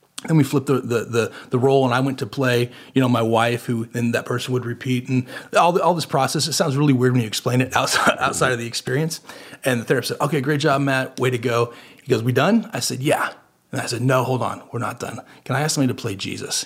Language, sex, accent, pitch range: English, male, American, 120-135 Hz